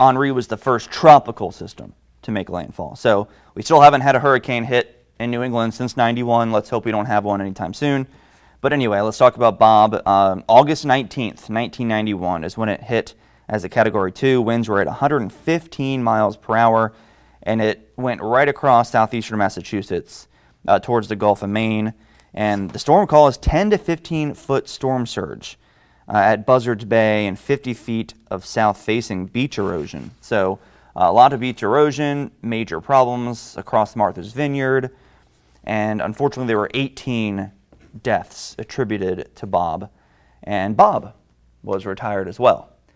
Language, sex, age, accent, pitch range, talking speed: English, male, 30-49, American, 100-125 Hz, 160 wpm